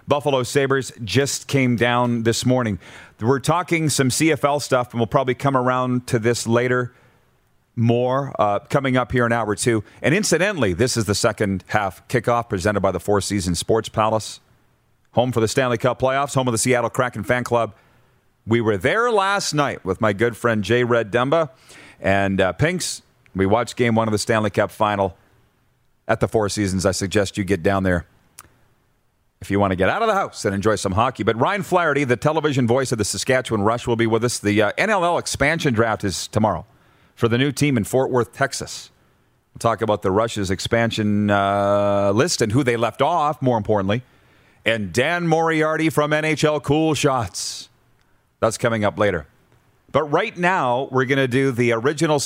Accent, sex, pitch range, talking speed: American, male, 105-135 Hz, 190 wpm